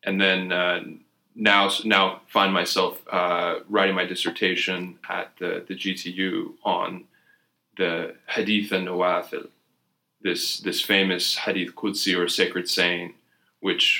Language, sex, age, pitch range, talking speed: English, male, 20-39, 85-95 Hz, 120 wpm